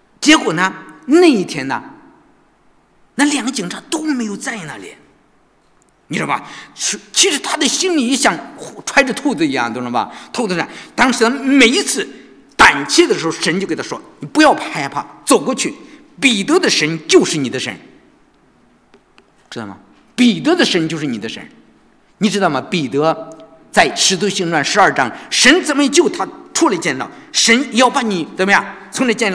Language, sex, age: English, male, 50-69